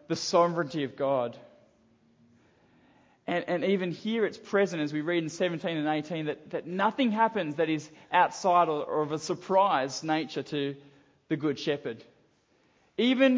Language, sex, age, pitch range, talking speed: English, male, 20-39, 160-205 Hz, 155 wpm